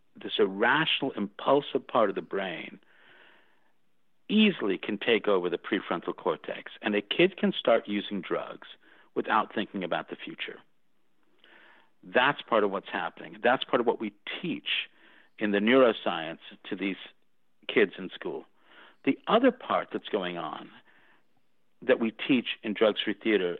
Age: 50-69